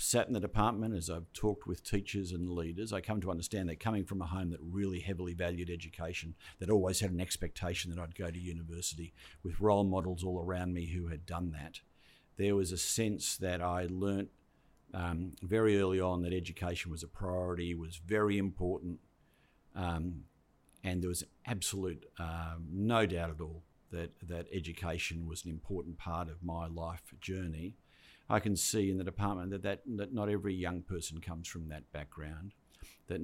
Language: English